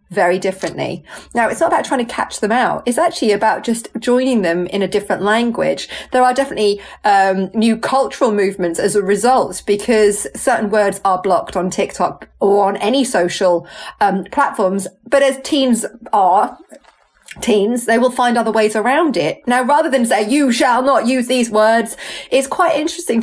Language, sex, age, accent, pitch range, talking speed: English, female, 30-49, British, 200-255 Hz, 180 wpm